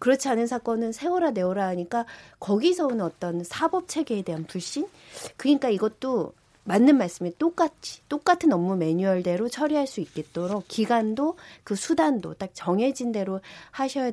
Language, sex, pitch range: Korean, female, 175-255 Hz